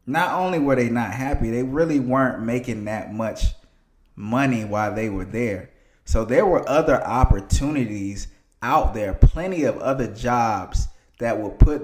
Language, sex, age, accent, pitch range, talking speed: English, male, 20-39, American, 100-130 Hz, 155 wpm